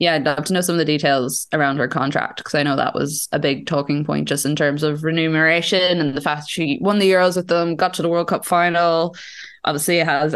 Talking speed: 255 wpm